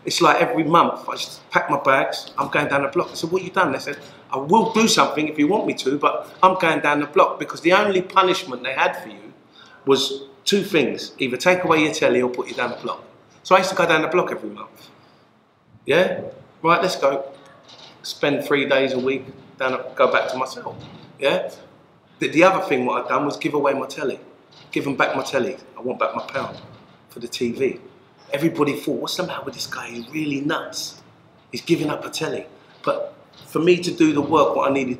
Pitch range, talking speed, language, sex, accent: 125-165 Hz, 235 wpm, English, male, British